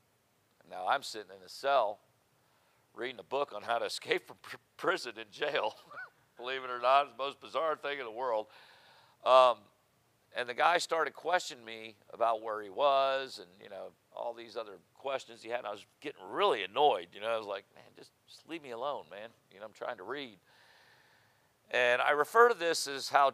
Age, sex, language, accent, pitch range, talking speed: 50-69, male, English, American, 115-140 Hz, 205 wpm